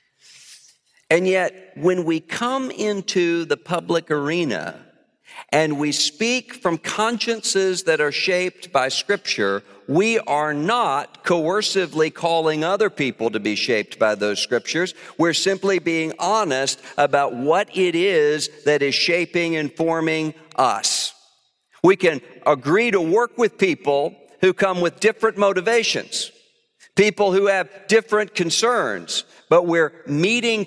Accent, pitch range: American, 150-210 Hz